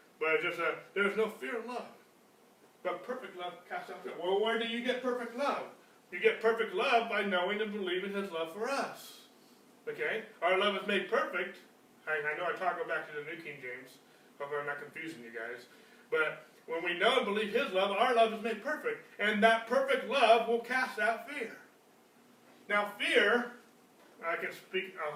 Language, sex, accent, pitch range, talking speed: English, male, American, 185-245 Hz, 195 wpm